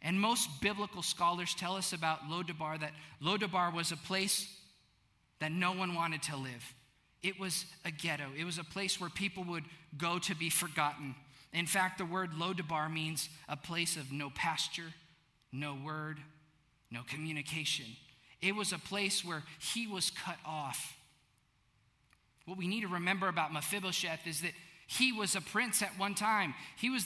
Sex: male